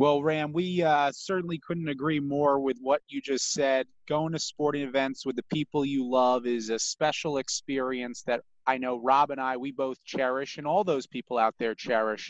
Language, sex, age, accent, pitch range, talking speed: English, male, 30-49, American, 130-150 Hz, 205 wpm